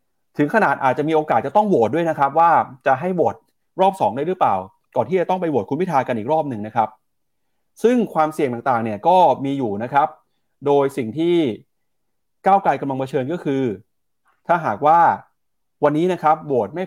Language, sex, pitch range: Thai, male, 125-180 Hz